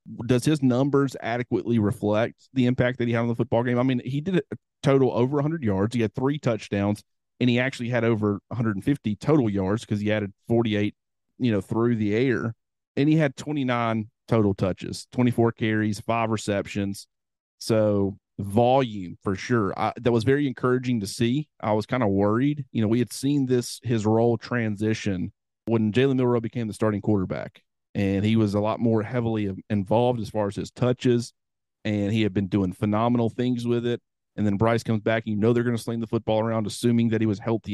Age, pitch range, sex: 30-49, 105-120 Hz, male